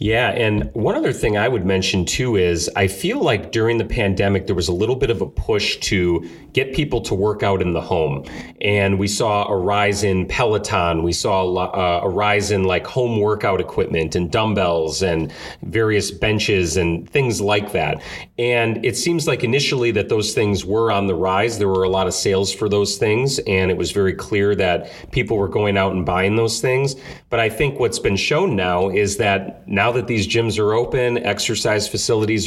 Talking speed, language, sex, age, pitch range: 205 wpm, English, male, 40-59, 95-115 Hz